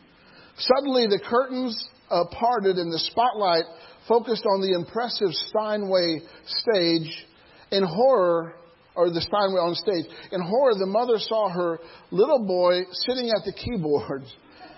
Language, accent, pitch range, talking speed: English, American, 170-230 Hz, 135 wpm